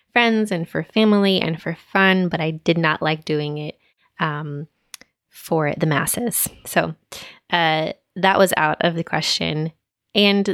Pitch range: 155-185 Hz